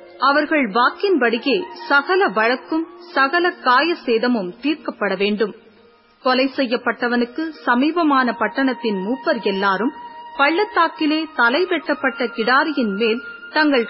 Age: 30-49